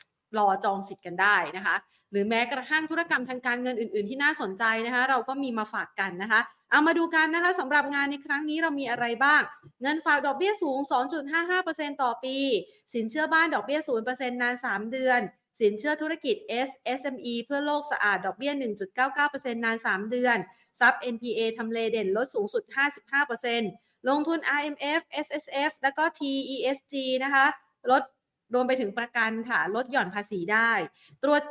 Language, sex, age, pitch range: Thai, female, 30-49, 220-290 Hz